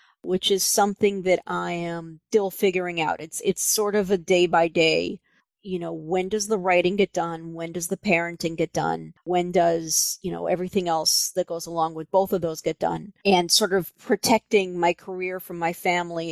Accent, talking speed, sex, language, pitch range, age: American, 200 wpm, female, English, 170-195 Hz, 40-59